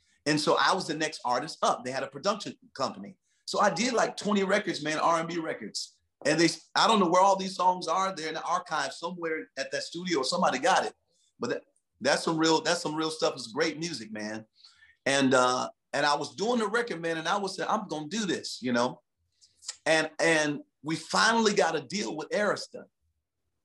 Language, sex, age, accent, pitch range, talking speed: English, male, 40-59, American, 140-180 Hz, 220 wpm